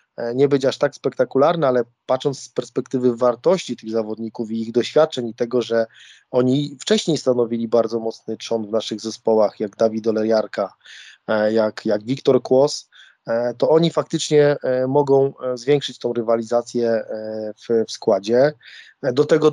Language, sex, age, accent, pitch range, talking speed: Polish, male, 20-39, native, 115-135 Hz, 140 wpm